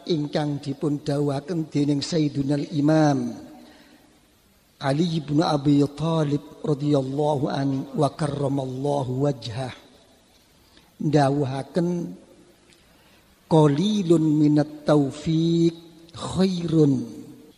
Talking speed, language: 70 wpm, Indonesian